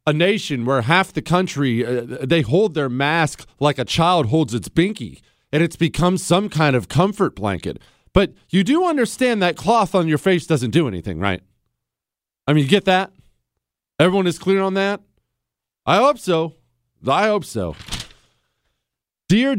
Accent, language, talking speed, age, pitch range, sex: American, English, 170 wpm, 40-59, 120-180 Hz, male